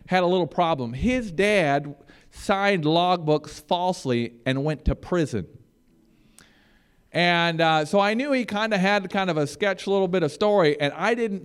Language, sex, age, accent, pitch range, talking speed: English, male, 40-59, American, 160-215 Hz, 180 wpm